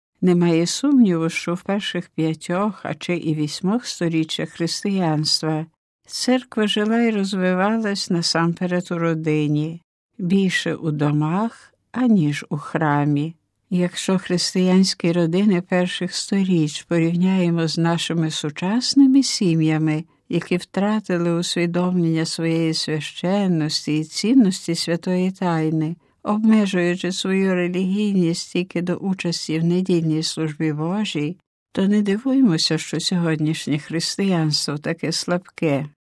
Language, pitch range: Ukrainian, 160-190 Hz